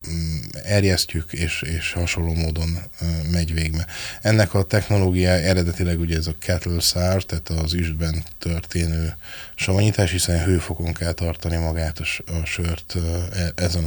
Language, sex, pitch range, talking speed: Hungarian, male, 85-95 Hz, 125 wpm